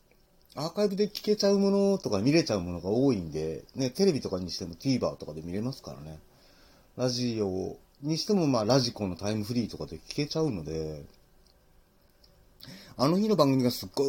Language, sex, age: Japanese, male, 40-59